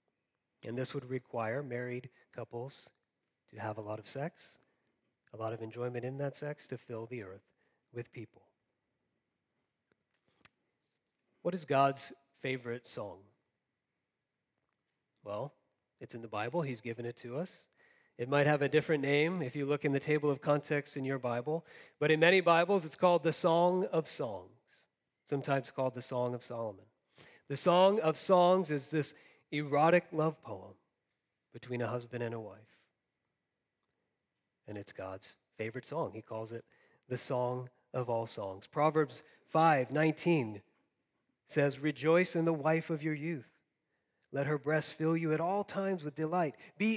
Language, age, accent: English, 30-49, American